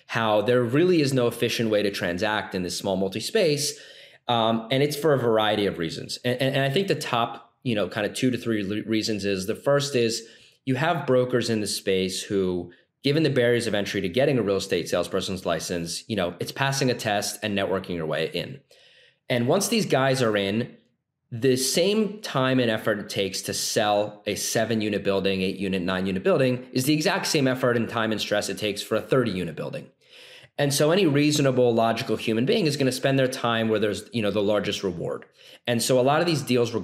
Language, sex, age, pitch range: English, male, 20-39, 100-130 Hz